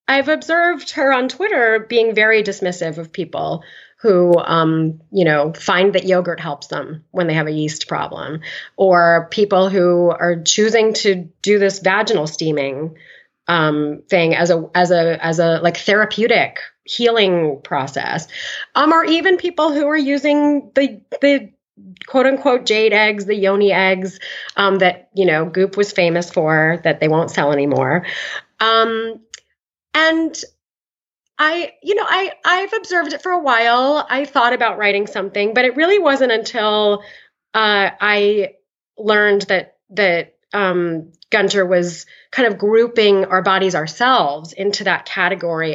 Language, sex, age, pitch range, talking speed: English, female, 30-49, 170-230 Hz, 150 wpm